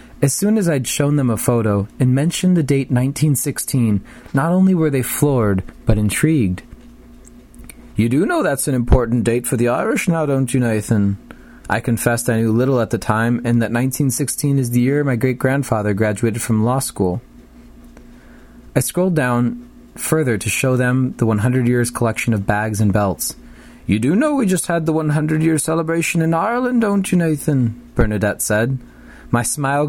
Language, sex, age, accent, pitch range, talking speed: English, male, 30-49, American, 115-155 Hz, 175 wpm